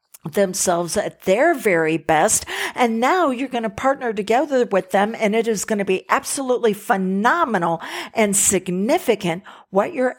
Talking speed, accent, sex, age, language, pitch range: 155 wpm, American, female, 50-69, English, 175-235 Hz